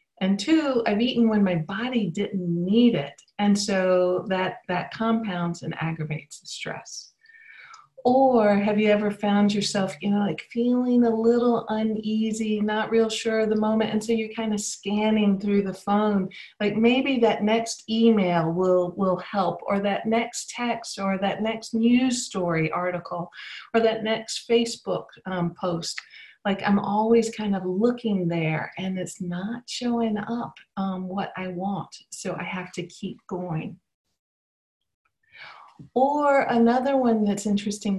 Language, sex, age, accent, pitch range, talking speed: English, female, 40-59, American, 180-220 Hz, 155 wpm